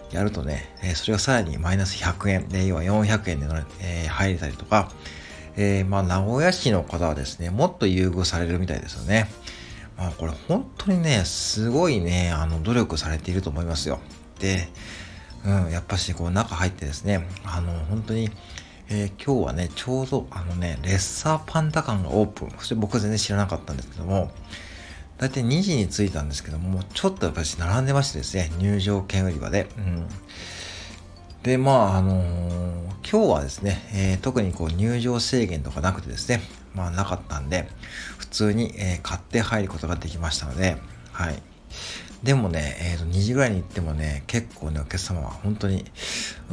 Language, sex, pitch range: Japanese, male, 85-105 Hz